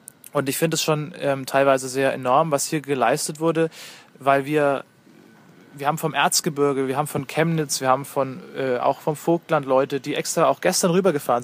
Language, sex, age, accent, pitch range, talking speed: German, male, 20-39, German, 135-160 Hz, 190 wpm